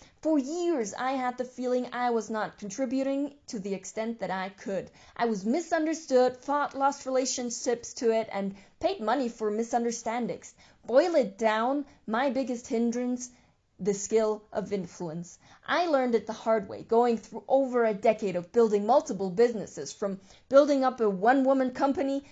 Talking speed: 160 wpm